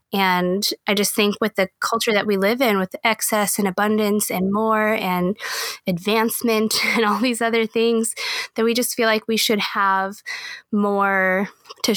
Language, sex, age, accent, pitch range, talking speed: English, female, 20-39, American, 195-235 Hz, 170 wpm